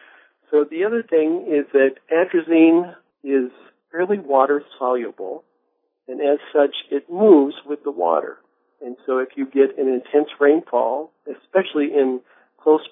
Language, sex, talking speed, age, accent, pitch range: English, male, 140 wpm, 50-69, American, 130-155 Hz